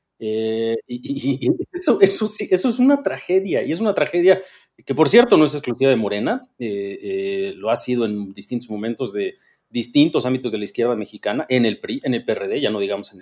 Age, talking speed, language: 40-59, 210 wpm, Spanish